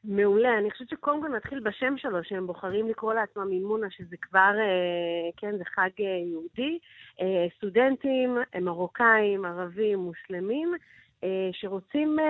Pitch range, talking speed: 180-235 Hz, 115 wpm